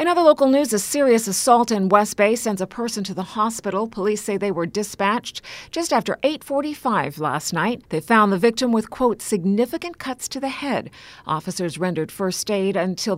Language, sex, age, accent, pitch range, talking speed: English, female, 40-59, American, 185-235 Hz, 190 wpm